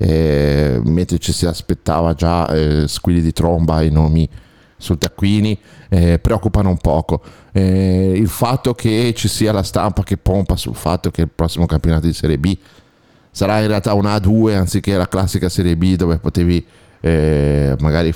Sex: male